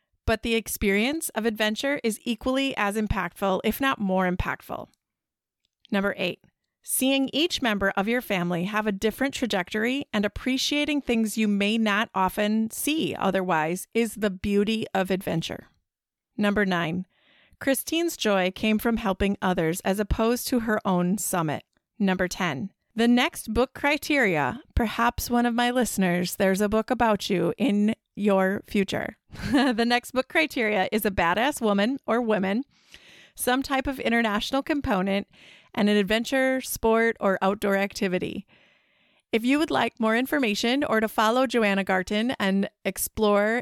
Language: English